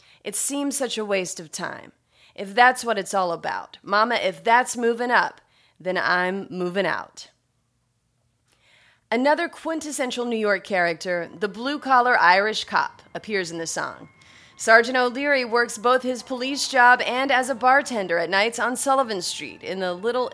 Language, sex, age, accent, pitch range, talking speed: English, female, 30-49, American, 195-255 Hz, 160 wpm